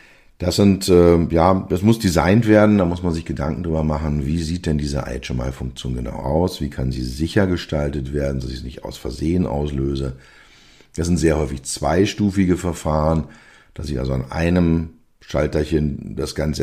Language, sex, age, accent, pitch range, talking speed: German, male, 50-69, German, 70-85 Hz, 175 wpm